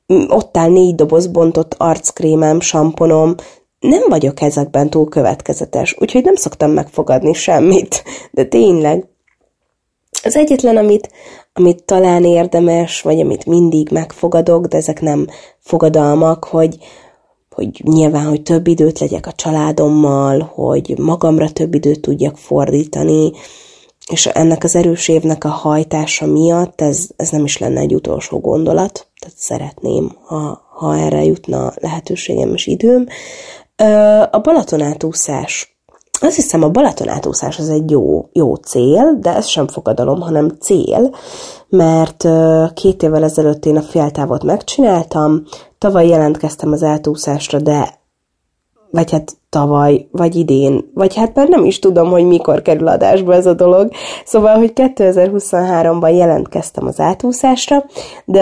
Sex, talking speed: female, 130 wpm